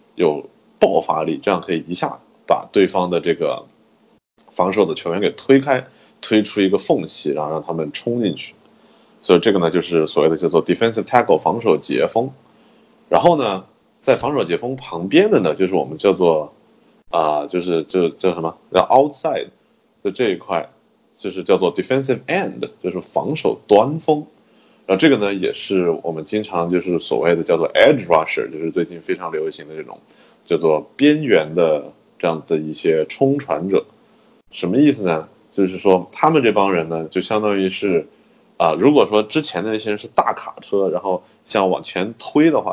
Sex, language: male, Chinese